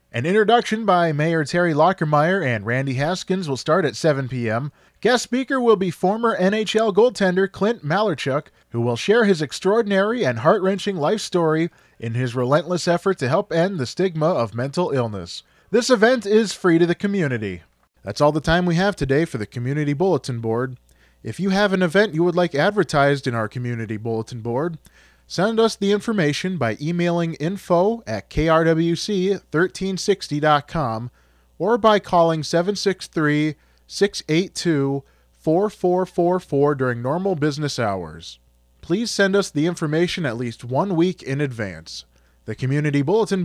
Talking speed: 150 wpm